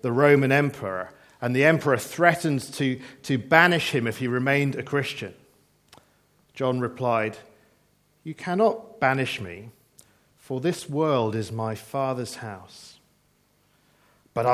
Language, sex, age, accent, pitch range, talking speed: English, male, 50-69, British, 120-155 Hz, 125 wpm